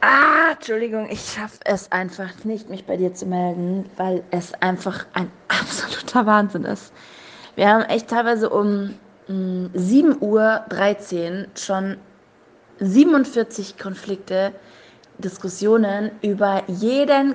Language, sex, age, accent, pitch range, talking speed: German, female, 20-39, German, 195-230 Hz, 110 wpm